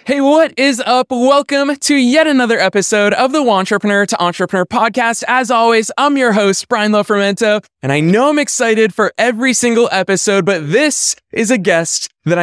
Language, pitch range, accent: English, 160-220 Hz, American